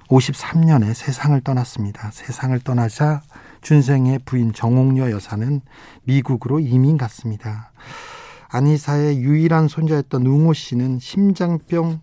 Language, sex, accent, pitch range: Korean, male, native, 120-155 Hz